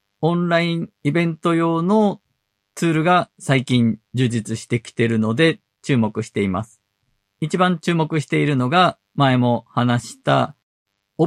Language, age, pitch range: Japanese, 50-69, 105-155 Hz